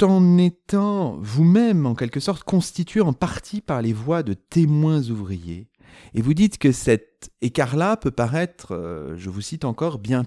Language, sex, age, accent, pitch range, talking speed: French, male, 40-59, French, 100-165 Hz, 170 wpm